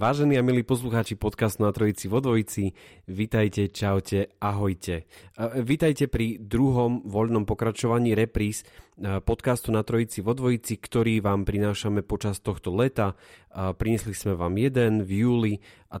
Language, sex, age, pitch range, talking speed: Slovak, male, 30-49, 105-120 Hz, 135 wpm